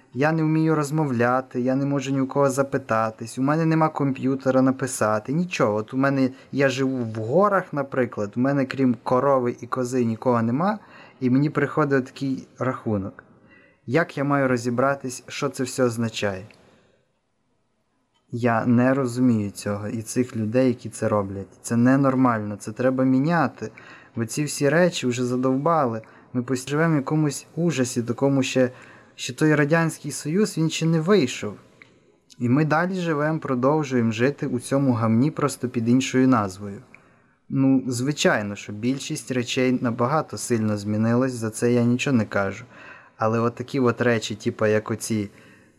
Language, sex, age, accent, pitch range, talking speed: Ukrainian, male, 20-39, native, 115-135 Hz, 155 wpm